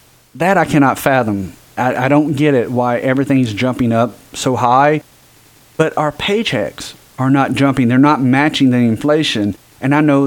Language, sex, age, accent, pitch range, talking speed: English, male, 40-59, American, 120-150 Hz, 170 wpm